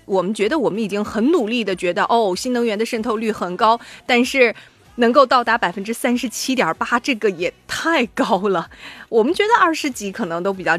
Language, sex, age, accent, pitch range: Chinese, female, 30-49, native, 180-255 Hz